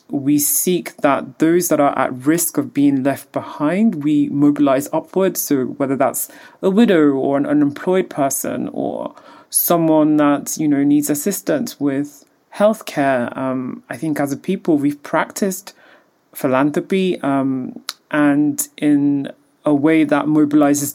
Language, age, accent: English, 30-49, British